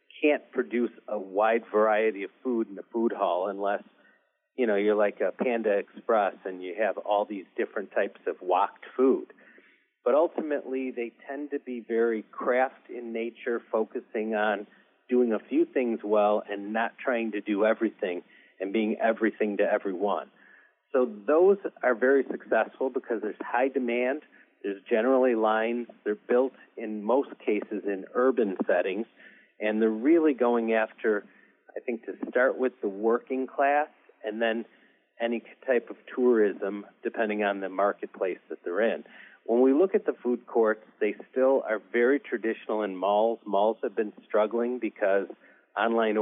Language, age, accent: English, 40-59, American